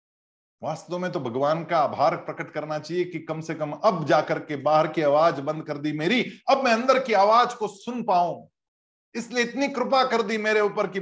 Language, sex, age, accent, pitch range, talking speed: Hindi, male, 50-69, native, 165-240 Hz, 210 wpm